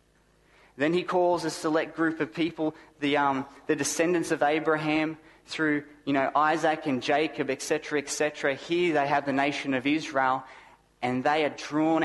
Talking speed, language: 165 wpm, English